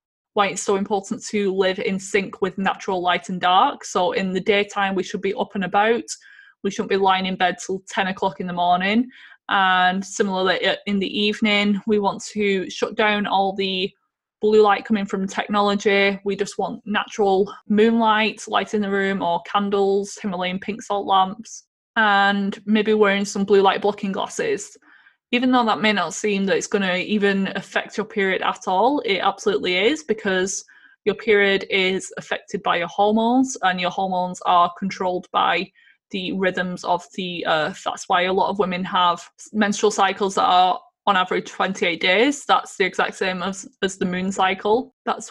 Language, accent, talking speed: English, British, 185 wpm